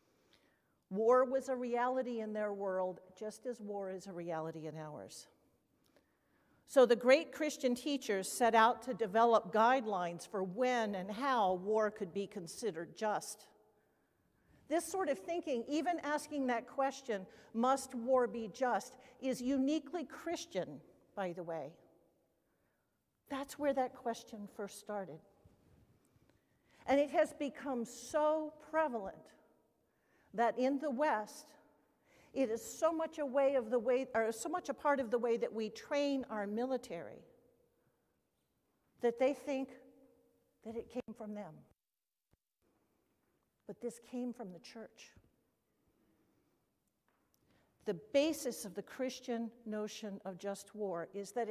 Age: 50-69